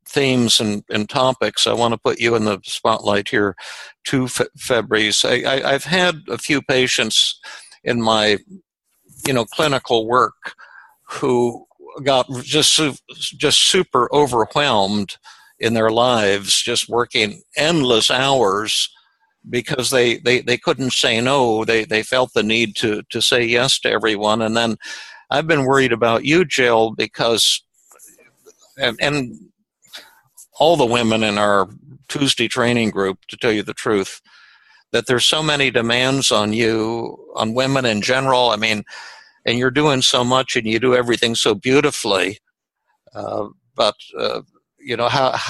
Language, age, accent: English, 60-79, American